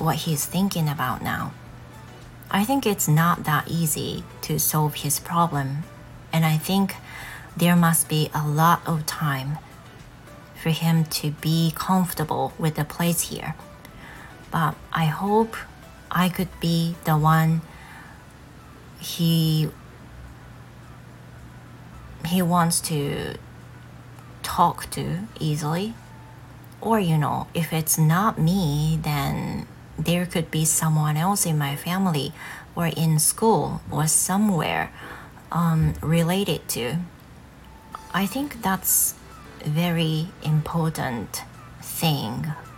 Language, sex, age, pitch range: Japanese, female, 30-49, 150-180 Hz